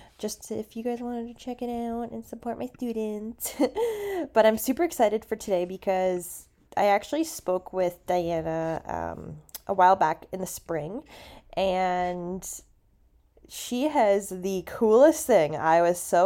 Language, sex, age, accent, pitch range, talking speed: English, female, 20-39, American, 165-225 Hz, 150 wpm